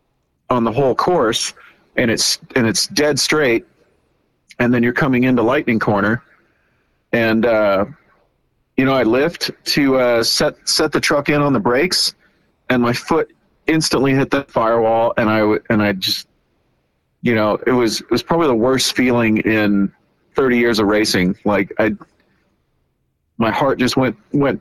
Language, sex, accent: English, male, American